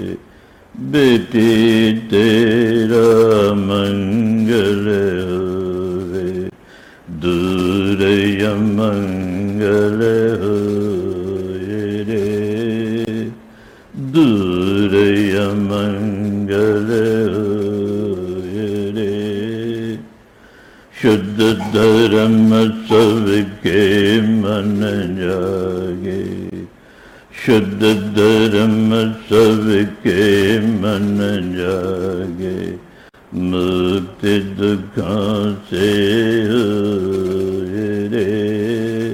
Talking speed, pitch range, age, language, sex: 35 wpm, 100-110 Hz, 60-79, Hindi, male